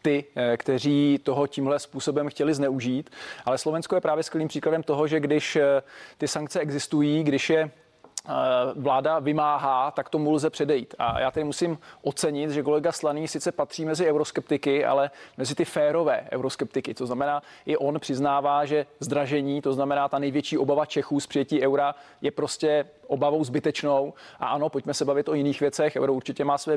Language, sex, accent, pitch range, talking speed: Czech, male, native, 140-155 Hz, 170 wpm